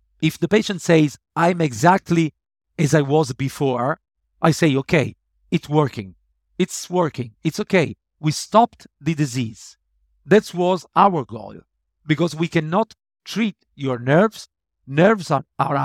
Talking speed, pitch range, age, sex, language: 135 wpm, 130-180 Hz, 50-69, male, English